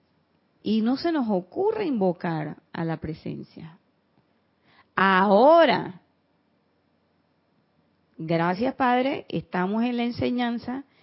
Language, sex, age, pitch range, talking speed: Spanish, female, 40-59, 175-230 Hz, 85 wpm